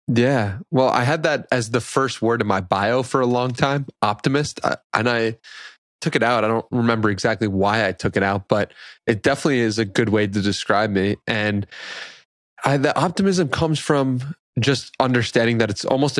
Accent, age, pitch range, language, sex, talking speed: American, 20-39, 110-135 Hz, English, male, 190 wpm